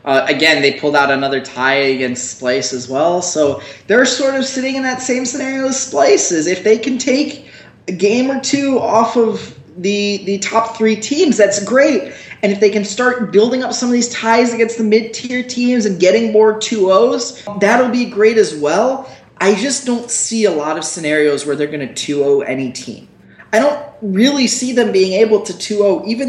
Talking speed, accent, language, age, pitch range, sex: 200 wpm, American, English, 20-39, 145-225 Hz, male